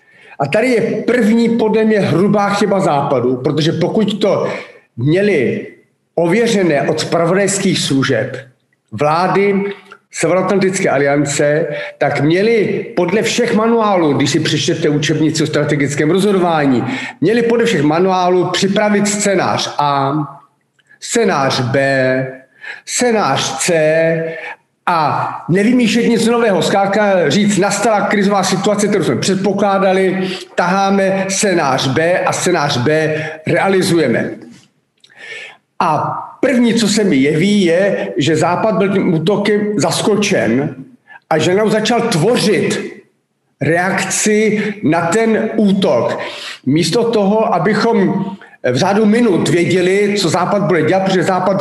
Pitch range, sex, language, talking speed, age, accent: 160-210 Hz, male, Czech, 110 wpm, 50-69, native